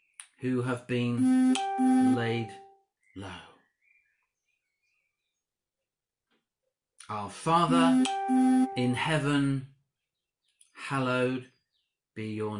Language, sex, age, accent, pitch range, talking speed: English, male, 50-69, British, 110-155 Hz, 55 wpm